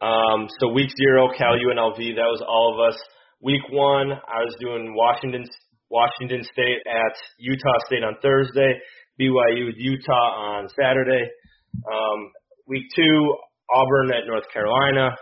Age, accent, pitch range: 30-49, American, 115-130 Hz